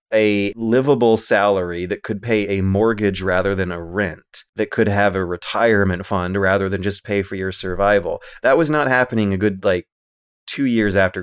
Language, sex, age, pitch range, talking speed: English, male, 30-49, 95-110 Hz, 185 wpm